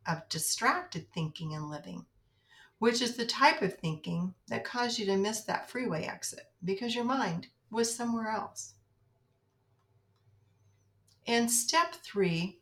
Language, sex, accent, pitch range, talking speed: English, female, American, 150-235 Hz, 135 wpm